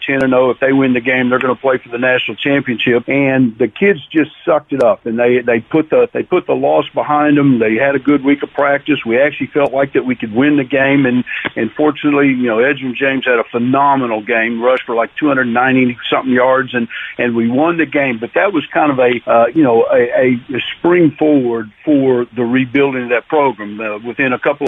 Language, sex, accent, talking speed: English, male, American, 235 wpm